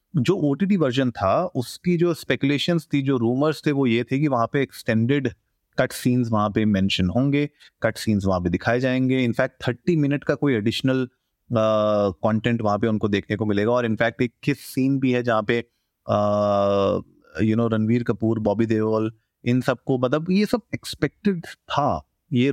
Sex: male